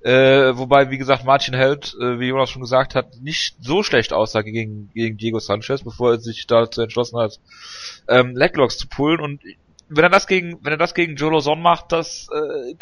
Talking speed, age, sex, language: 205 wpm, 30-49, male, German